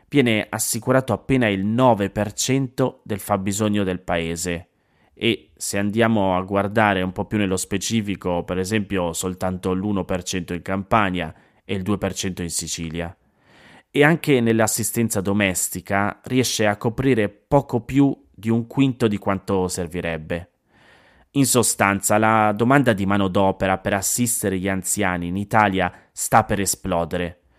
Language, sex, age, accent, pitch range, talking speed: Italian, male, 20-39, native, 95-115 Hz, 135 wpm